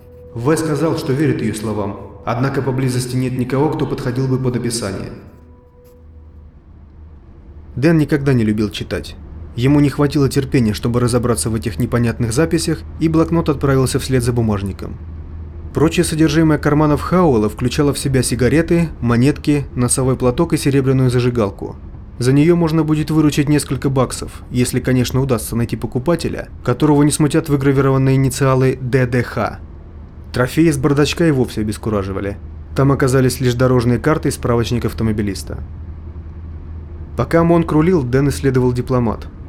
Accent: native